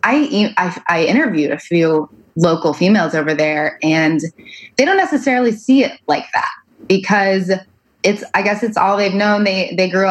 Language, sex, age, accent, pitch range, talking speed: English, female, 20-39, American, 165-195 Hz, 170 wpm